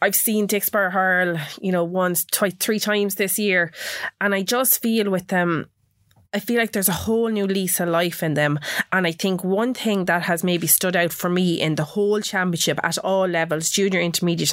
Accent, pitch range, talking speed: Irish, 160-190 Hz, 210 wpm